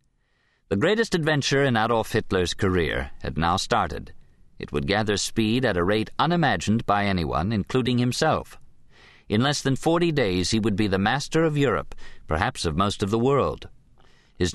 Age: 50-69